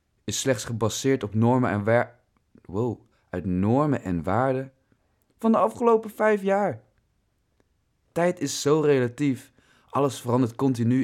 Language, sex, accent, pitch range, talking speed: Dutch, male, Dutch, 105-130 Hz, 130 wpm